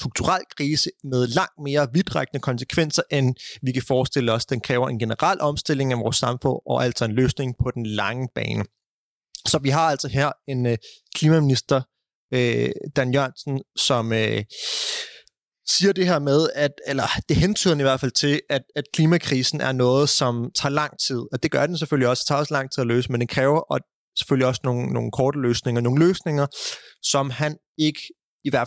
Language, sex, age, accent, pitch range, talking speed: Danish, male, 30-49, native, 125-150 Hz, 195 wpm